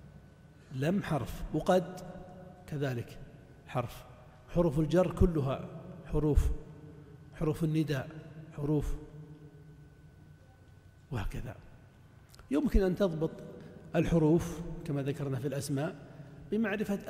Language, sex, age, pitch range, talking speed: Arabic, male, 60-79, 150-195 Hz, 75 wpm